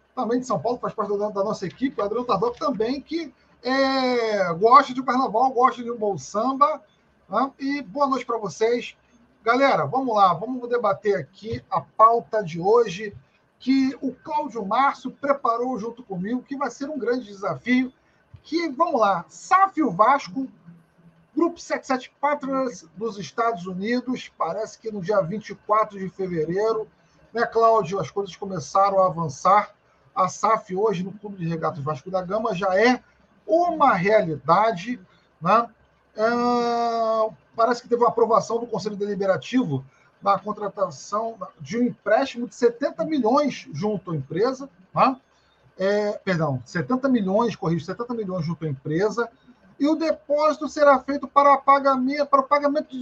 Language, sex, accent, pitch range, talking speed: Portuguese, male, Brazilian, 195-260 Hz, 150 wpm